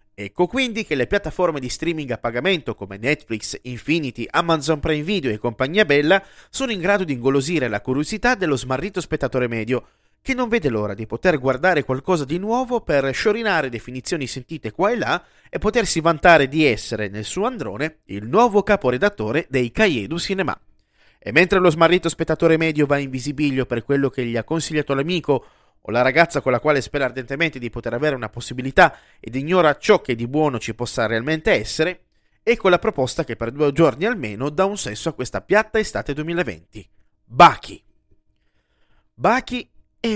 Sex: male